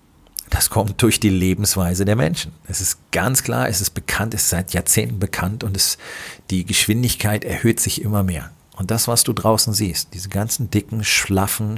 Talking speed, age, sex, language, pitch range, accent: 190 wpm, 40-59, male, German, 95-115 Hz, German